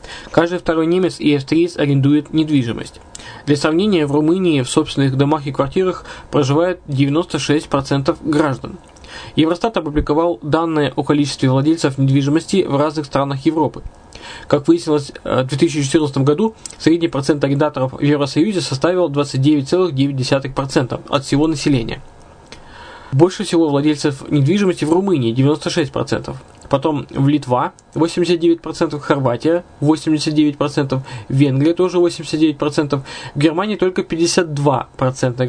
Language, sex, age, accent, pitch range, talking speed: Russian, male, 20-39, native, 140-165 Hz, 115 wpm